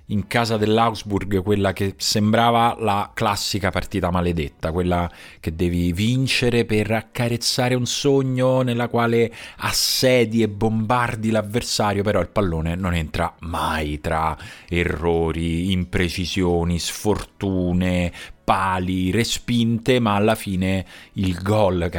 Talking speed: 115 wpm